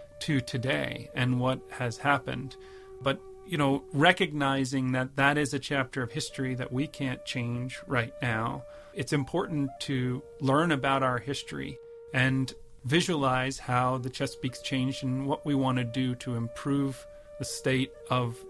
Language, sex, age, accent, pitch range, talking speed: English, male, 40-59, American, 125-150 Hz, 150 wpm